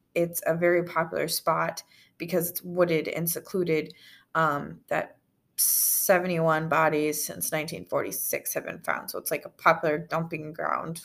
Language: English